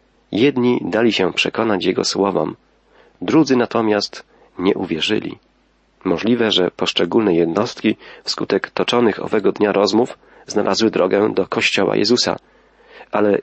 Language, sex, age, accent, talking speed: Polish, male, 40-59, native, 110 wpm